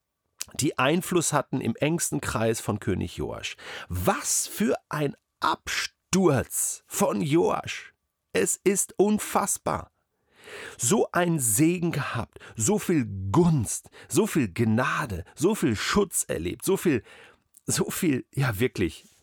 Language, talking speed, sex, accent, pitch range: German, 120 wpm, male, German, 95-150 Hz